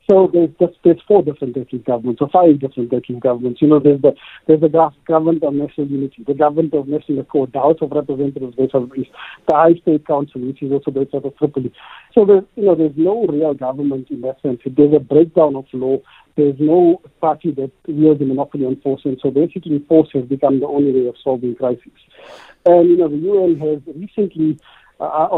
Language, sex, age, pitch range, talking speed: English, male, 50-69, 135-160 Hz, 210 wpm